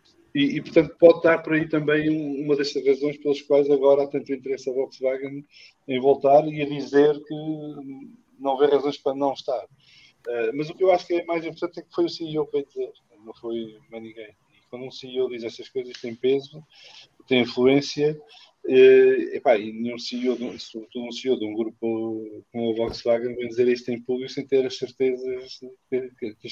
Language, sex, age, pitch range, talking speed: English, male, 20-39, 115-145 Hz, 210 wpm